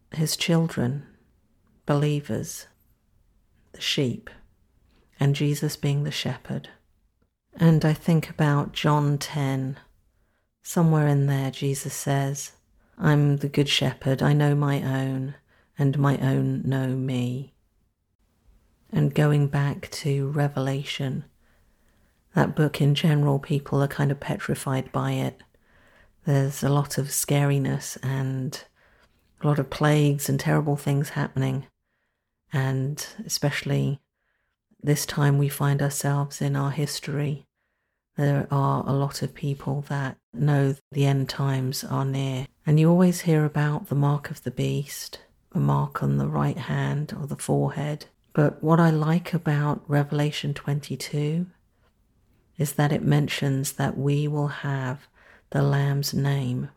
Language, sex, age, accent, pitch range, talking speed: English, female, 50-69, British, 135-145 Hz, 130 wpm